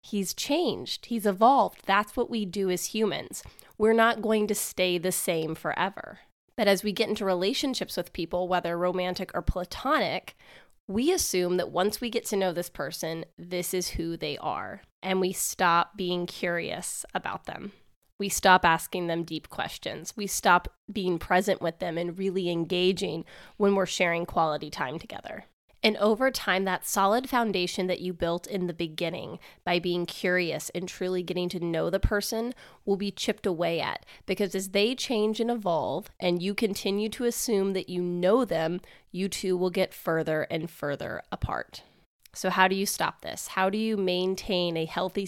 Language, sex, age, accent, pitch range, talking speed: English, female, 20-39, American, 175-205 Hz, 180 wpm